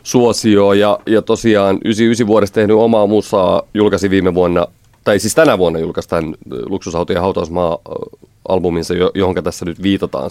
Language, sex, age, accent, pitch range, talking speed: Finnish, male, 30-49, native, 90-110 Hz, 145 wpm